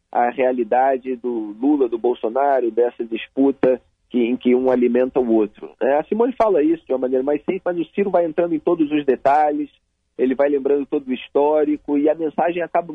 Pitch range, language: 125-215 Hz, Portuguese